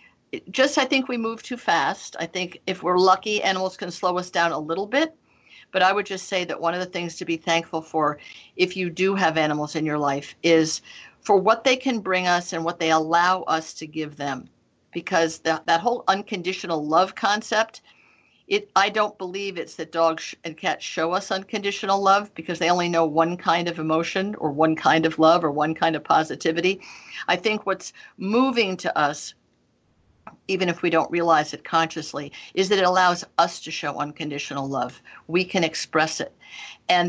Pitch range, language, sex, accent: 165-195 Hz, English, female, American